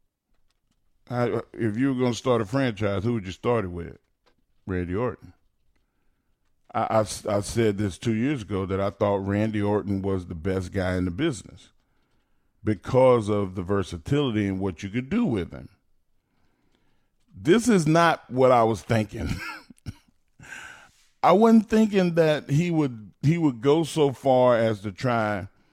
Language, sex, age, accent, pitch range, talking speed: English, male, 40-59, American, 105-145 Hz, 155 wpm